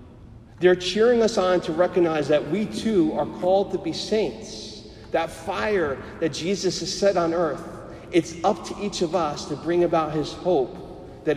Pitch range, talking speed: 125-180 Hz, 180 wpm